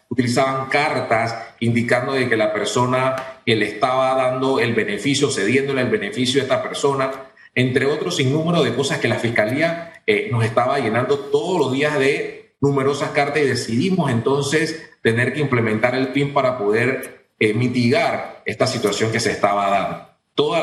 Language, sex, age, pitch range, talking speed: Spanish, male, 40-59, 125-155 Hz, 165 wpm